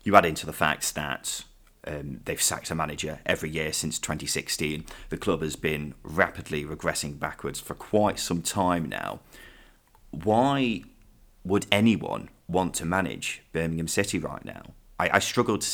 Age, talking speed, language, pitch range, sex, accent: 30-49, 155 wpm, English, 80-95 Hz, male, British